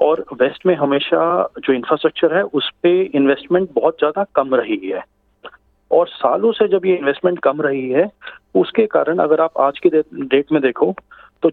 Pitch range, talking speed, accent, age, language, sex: 150-195 Hz, 175 wpm, native, 30-49, Hindi, male